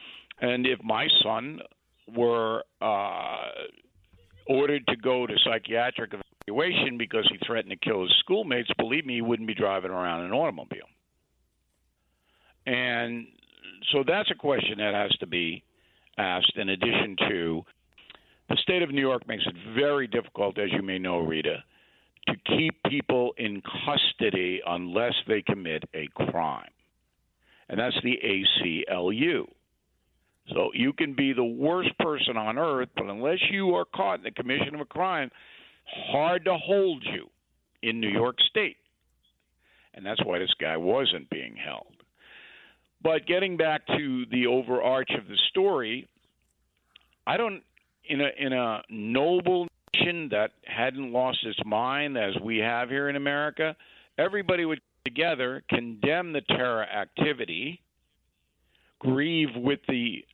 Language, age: English, 60-79